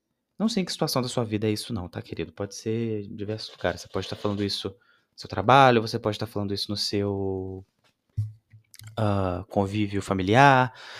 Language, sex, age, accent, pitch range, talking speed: Portuguese, male, 20-39, Brazilian, 110-170 Hz, 190 wpm